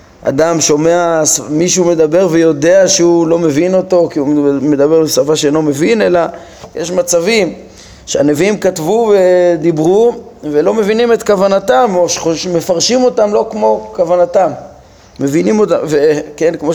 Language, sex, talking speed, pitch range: Hebrew, male, 125 wpm, 155-195 Hz